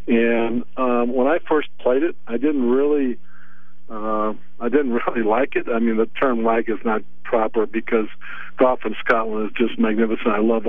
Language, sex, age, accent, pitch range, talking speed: English, male, 60-79, American, 115-130 Hz, 185 wpm